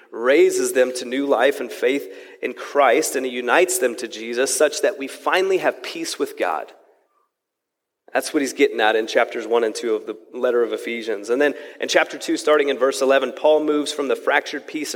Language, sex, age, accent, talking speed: English, male, 30-49, American, 215 wpm